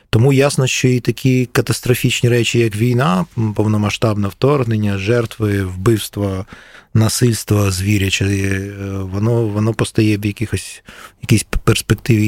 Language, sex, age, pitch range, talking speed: Ukrainian, male, 20-39, 100-130 Hz, 105 wpm